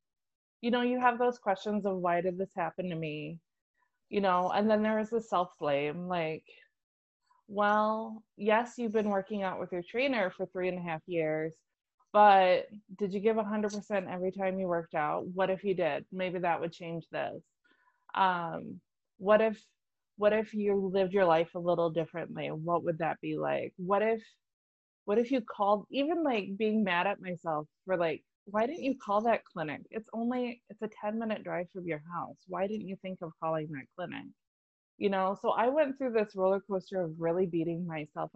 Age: 20-39